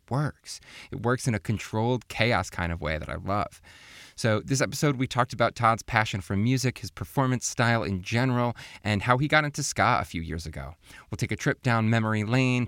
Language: English